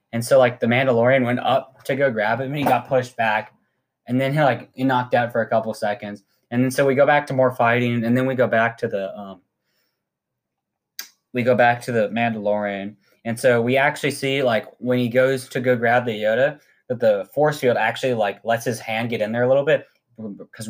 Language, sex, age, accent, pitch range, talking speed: English, male, 20-39, American, 115-135 Hz, 230 wpm